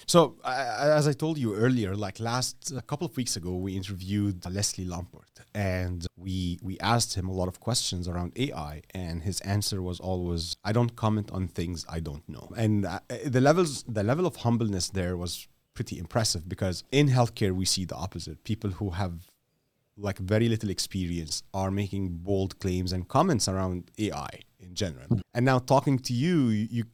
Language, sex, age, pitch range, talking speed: English, male, 30-49, 90-120 Hz, 185 wpm